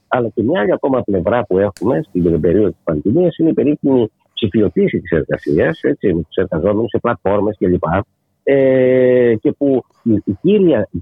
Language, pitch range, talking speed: Greek, 100-165 Hz, 165 wpm